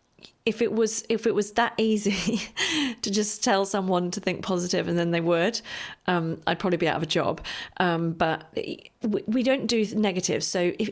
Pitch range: 175-220 Hz